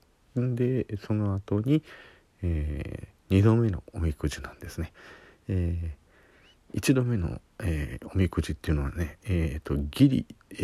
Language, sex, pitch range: Japanese, male, 80-105 Hz